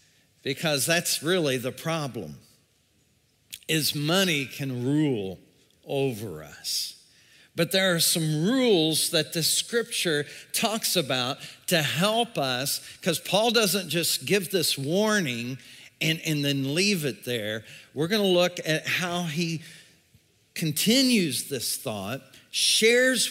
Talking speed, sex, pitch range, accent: 120 wpm, male, 140-195 Hz, American